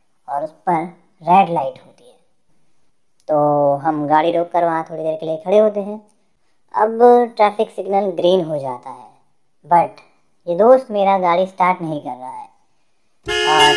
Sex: male